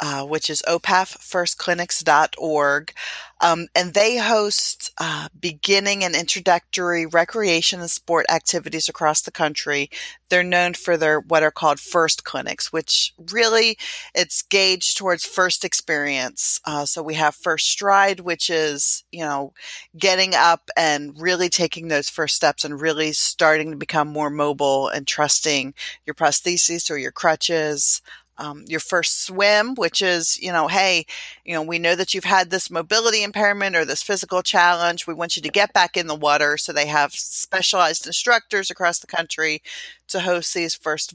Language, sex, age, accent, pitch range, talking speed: English, female, 40-59, American, 155-185 Hz, 160 wpm